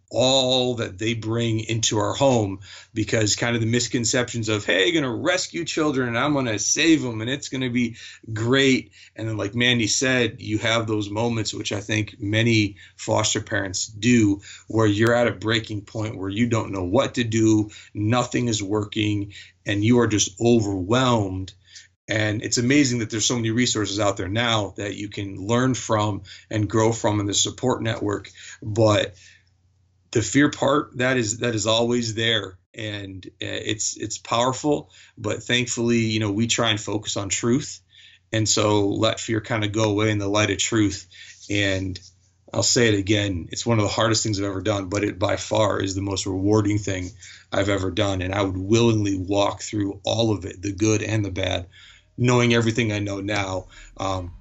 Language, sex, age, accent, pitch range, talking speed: English, male, 40-59, American, 100-115 Hz, 185 wpm